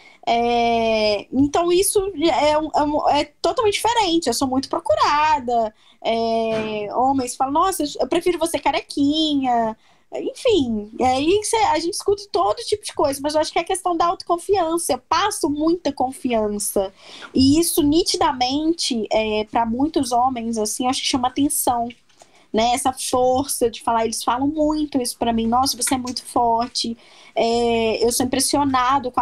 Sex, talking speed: female, 160 wpm